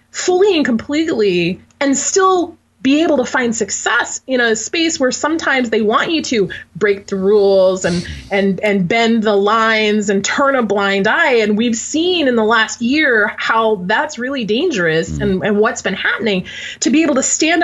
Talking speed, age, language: 185 wpm, 30-49, English